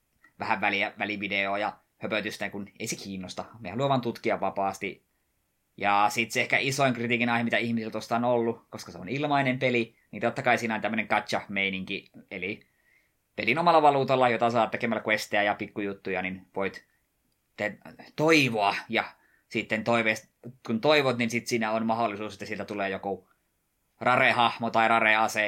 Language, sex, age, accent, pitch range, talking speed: Finnish, male, 20-39, native, 105-120 Hz, 165 wpm